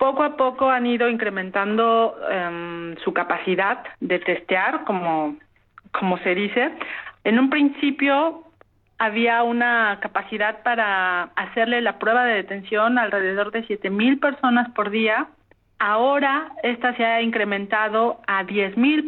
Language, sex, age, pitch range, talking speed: Spanish, female, 40-59, 200-245 Hz, 130 wpm